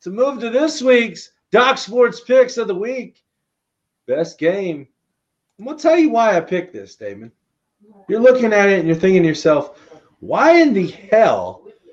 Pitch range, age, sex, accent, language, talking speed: 155-220 Hz, 40-59, male, American, English, 180 wpm